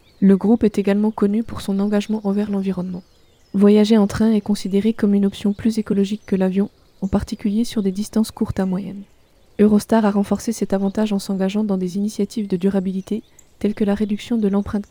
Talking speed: 195 wpm